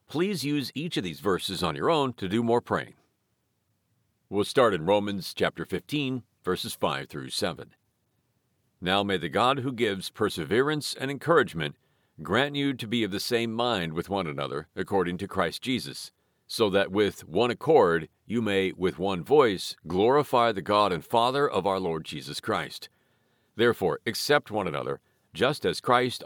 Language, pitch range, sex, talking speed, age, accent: English, 100-125 Hz, male, 170 wpm, 50-69, American